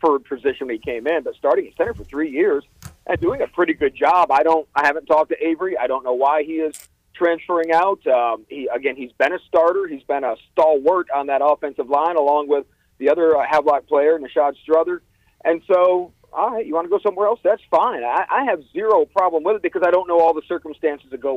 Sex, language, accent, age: male, English, American, 40-59